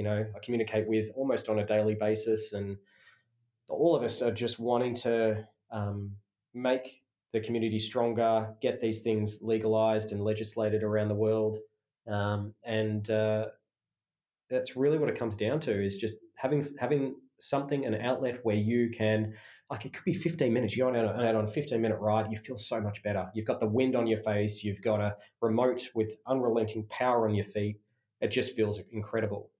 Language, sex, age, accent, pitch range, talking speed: English, male, 20-39, Australian, 105-120 Hz, 180 wpm